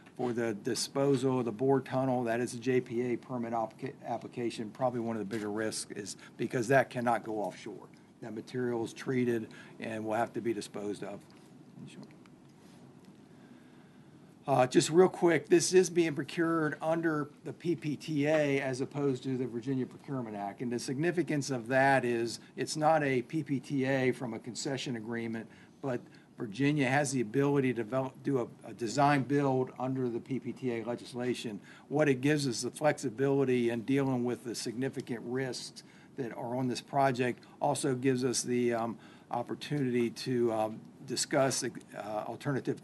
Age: 50-69